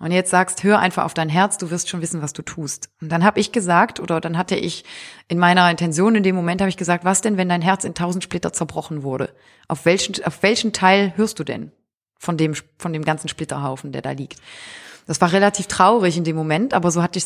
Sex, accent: female, German